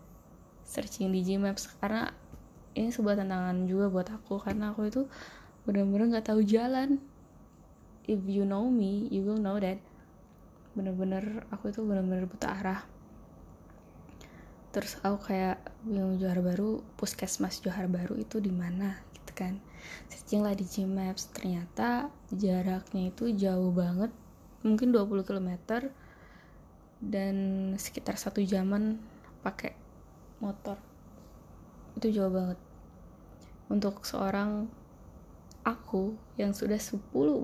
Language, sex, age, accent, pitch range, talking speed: Indonesian, female, 10-29, native, 190-220 Hz, 120 wpm